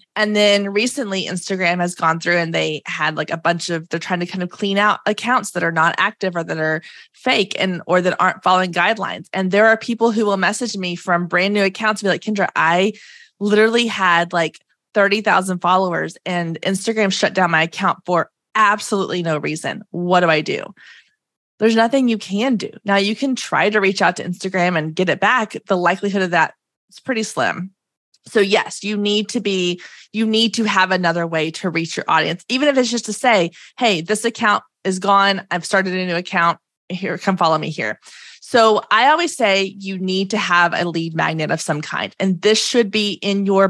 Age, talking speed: 20-39, 210 wpm